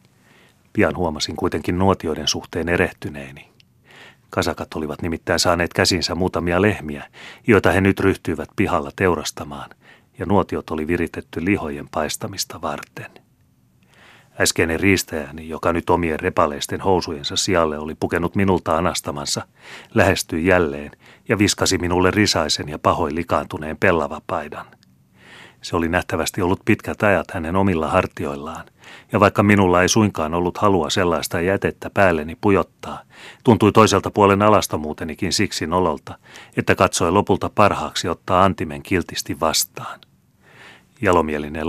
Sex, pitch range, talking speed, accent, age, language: male, 80-95 Hz, 120 wpm, native, 30-49, Finnish